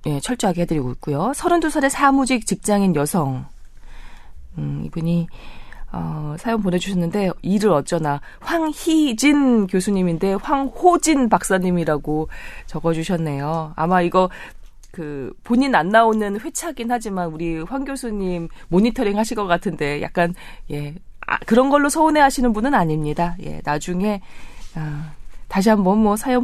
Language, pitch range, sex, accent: Korean, 155-235 Hz, female, native